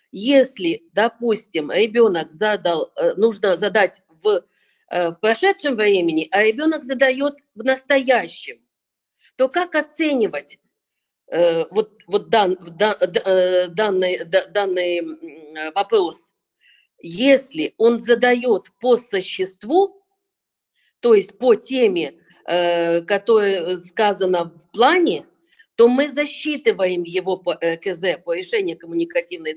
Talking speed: 95 wpm